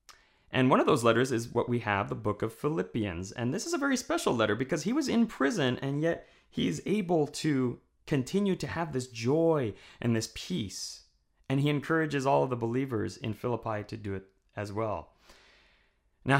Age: 30-49